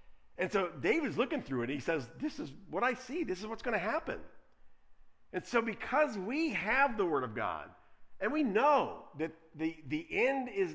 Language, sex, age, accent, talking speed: English, male, 50-69, American, 200 wpm